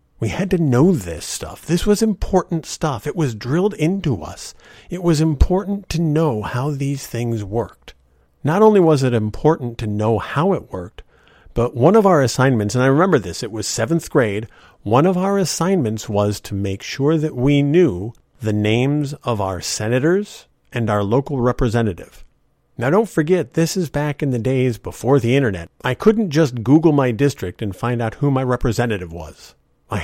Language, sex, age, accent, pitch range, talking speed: English, male, 50-69, American, 110-160 Hz, 185 wpm